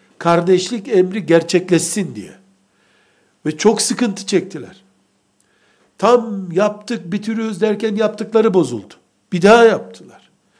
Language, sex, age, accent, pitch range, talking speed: Turkish, male, 60-79, native, 180-215 Hz, 95 wpm